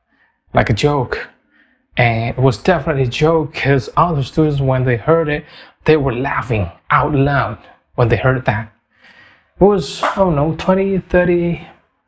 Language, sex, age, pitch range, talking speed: English, male, 20-39, 110-155 Hz, 160 wpm